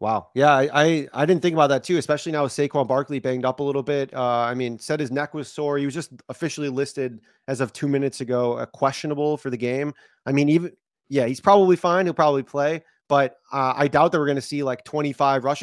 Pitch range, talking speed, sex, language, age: 130-155 Hz, 250 wpm, male, English, 30-49